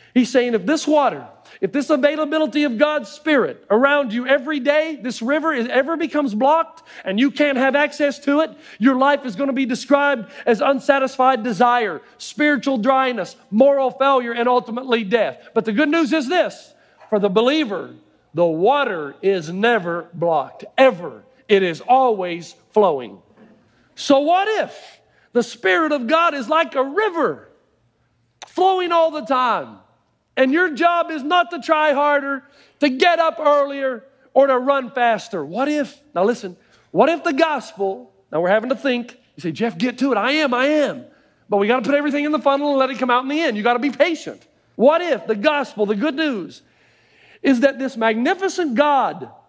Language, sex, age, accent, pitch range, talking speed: English, male, 50-69, American, 245-305 Hz, 185 wpm